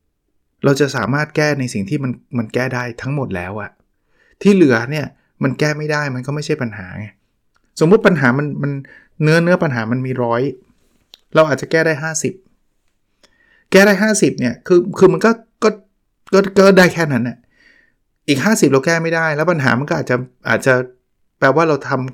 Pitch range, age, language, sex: 125-160 Hz, 20-39, Thai, male